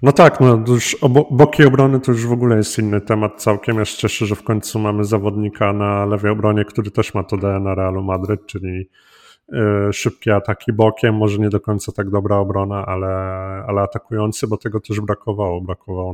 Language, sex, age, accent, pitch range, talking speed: Polish, male, 30-49, native, 100-110 Hz, 200 wpm